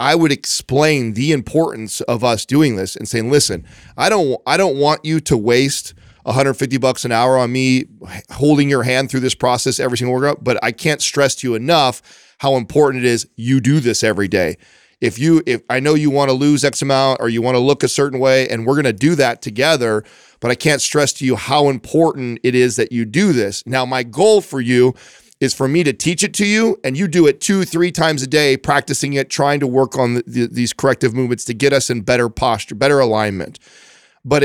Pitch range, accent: 125-150 Hz, American